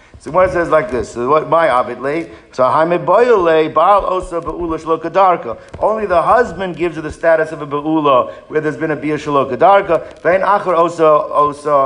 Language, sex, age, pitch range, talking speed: English, male, 50-69, 155-190 Hz, 105 wpm